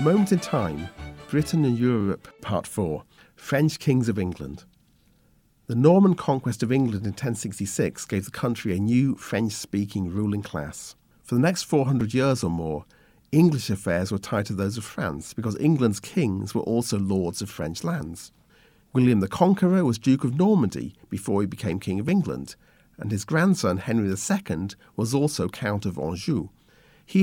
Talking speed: 170 wpm